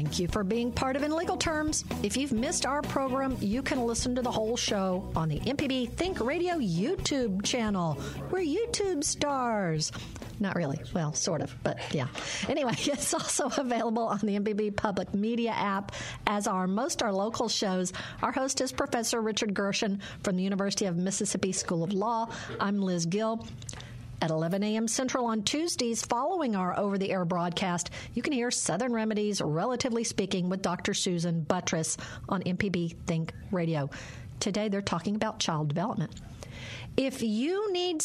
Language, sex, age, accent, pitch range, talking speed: English, female, 50-69, American, 185-255 Hz, 165 wpm